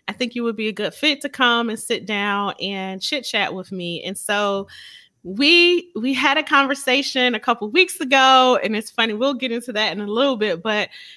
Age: 30-49